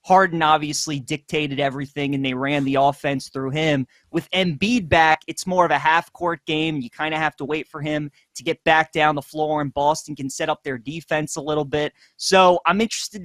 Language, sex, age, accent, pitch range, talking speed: English, male, 20-39, American, 140-170 Hz, 215 wpm